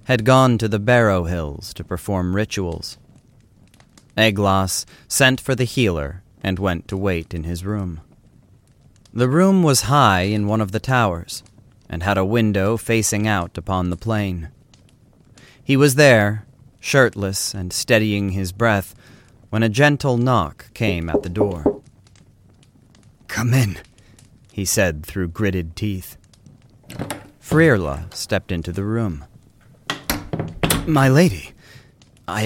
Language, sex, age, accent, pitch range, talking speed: English, male, 30-49, American, 95-125 Hz, 130 wpm